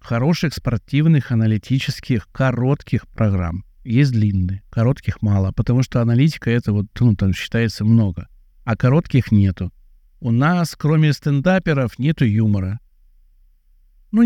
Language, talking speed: Russian, 120 wpm